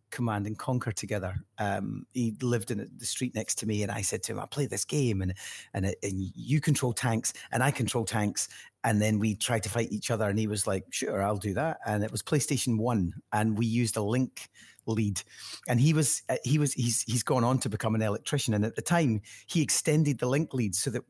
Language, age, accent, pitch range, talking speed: English, 30-49, British, 105-130 Hz, 235 wpm